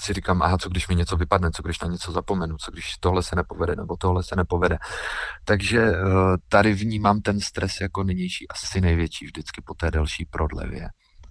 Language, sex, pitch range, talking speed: Czech, male, 90-110 Hz, 195 wpm